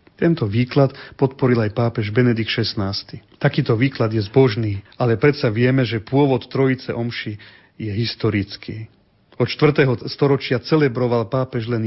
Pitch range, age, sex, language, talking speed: 115-140 Hz, 40-59, male, Slovak, 130 wpm